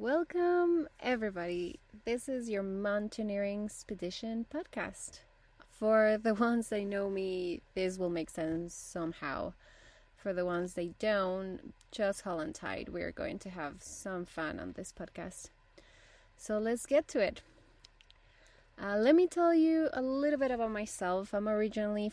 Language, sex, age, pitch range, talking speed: English, female, 20-39, 175-215 Hz, 145 wpm